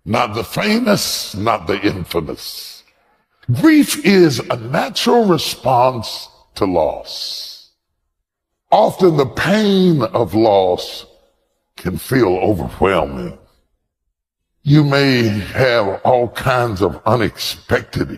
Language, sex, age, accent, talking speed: English, female, 60-79, American, 90 wpm